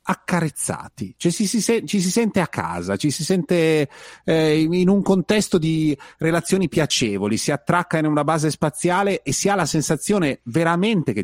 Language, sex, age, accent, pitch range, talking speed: Italian, male, 30-49, native, 105-160 Hz, 175 wpm